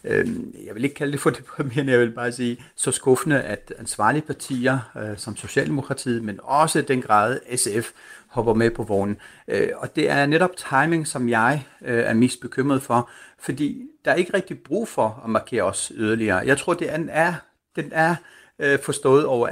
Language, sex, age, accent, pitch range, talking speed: Danish, male, 60-79, native, 110-145 Hz, 175 wpm